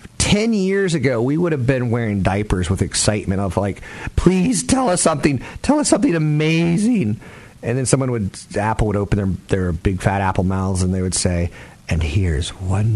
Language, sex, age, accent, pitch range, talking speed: English, male, 50-69, American, 95-130 Hz, 190 wpm